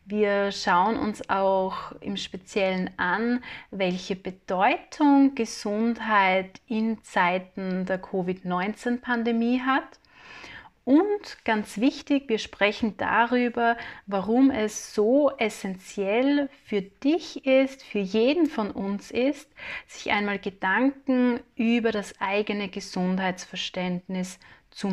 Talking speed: 100 wpm